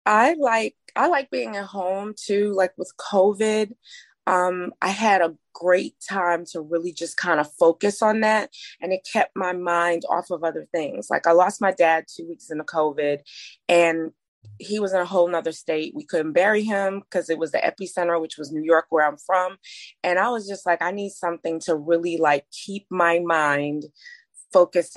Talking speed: 195 wpm